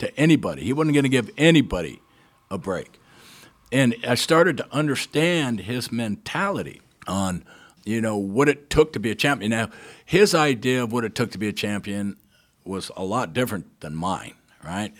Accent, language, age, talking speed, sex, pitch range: American, English, 60-79, 175 wpm, male, 105-145 Hz